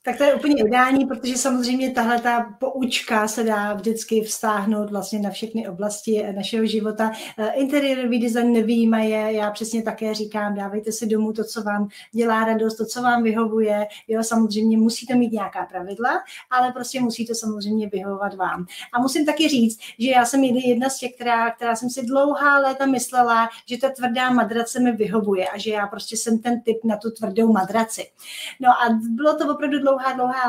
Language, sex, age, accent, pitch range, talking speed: Czech, female, 30-49, native, 220-245 Hz, 180 wpm